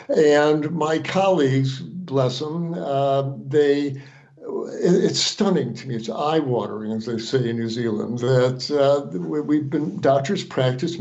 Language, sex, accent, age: English, male, American, 60-79